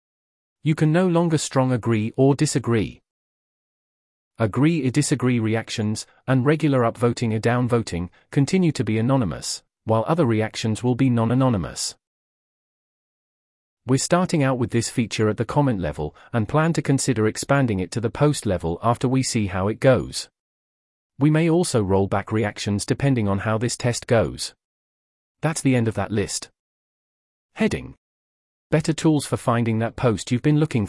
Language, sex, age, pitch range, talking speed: English, male, 40-59, 105-145 Hz, 155 wpm